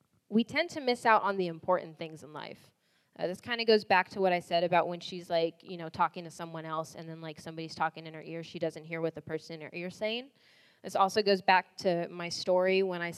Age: 20-39